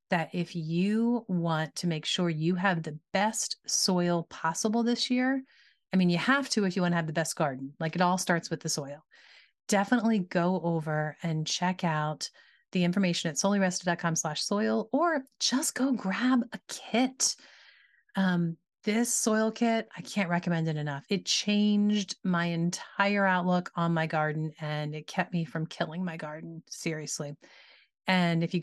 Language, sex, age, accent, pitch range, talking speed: English, female, 30-49, American, 165-215 Hz, 170 wpm